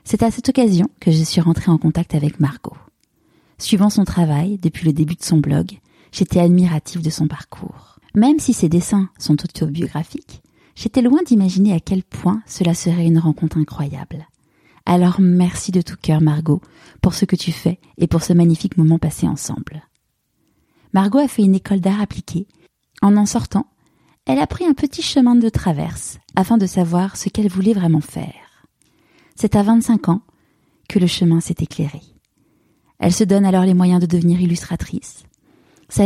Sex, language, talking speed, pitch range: female, French, 175 wpm, 160-200 Hz